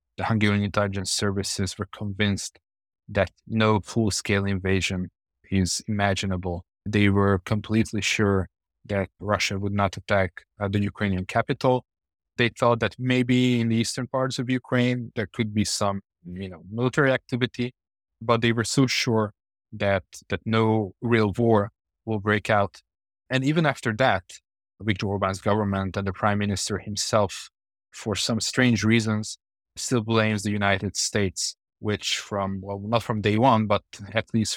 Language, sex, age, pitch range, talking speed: English, male, 20-39, 95-110 Hz, 145 wpm